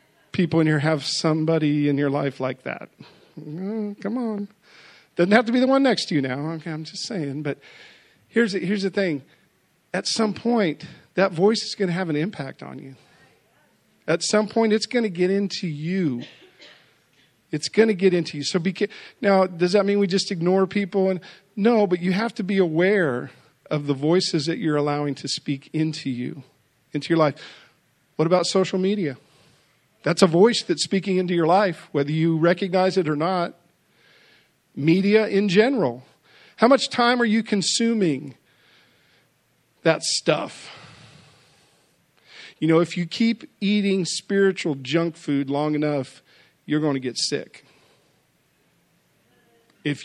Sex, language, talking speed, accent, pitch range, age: male, English, 165 wpm, American, 150-200 Hz, 40-59